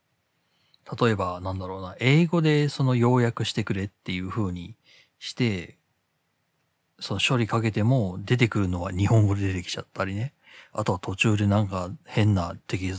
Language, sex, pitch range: Japanese, male, 95-135 Hz